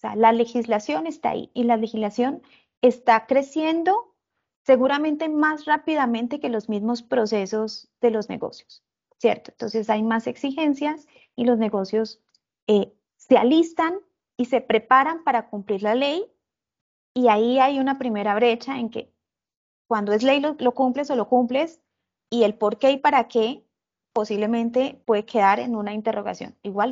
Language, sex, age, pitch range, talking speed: Spanish, female, 20-39, 220-275 Hz, 155 wpm